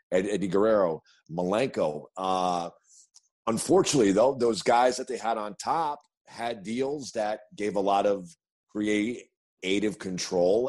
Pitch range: 100-125 Hz